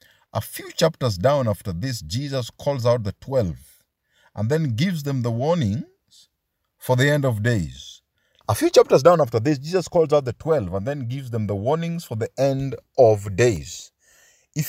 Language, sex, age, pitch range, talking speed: English, male, 50-69, 115-170 Hz, 185 wpm